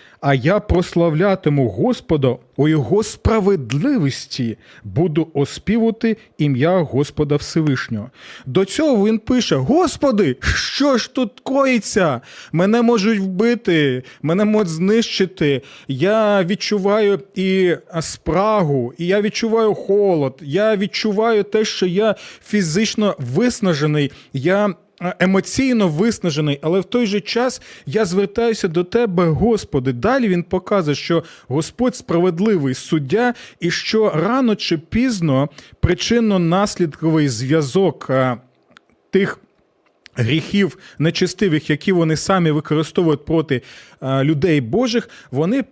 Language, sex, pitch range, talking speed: Ukrainian, male, 155-215 Hz, 105 wpm